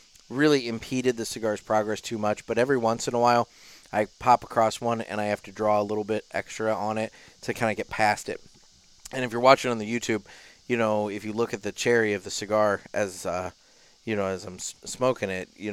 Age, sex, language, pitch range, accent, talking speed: 30-49, male, English, 105-140 Hz, American, 235 wpm